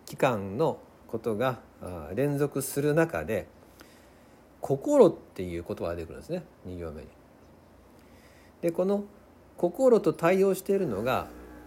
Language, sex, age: Japanese, male, 50-69